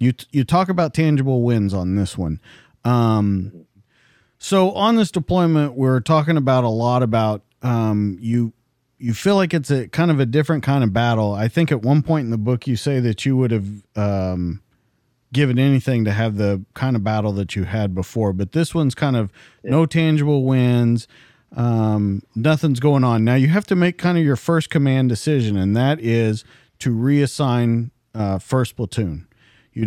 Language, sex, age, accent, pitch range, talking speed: English, male, 40-59, American, 115-150 Hz, 190 wpm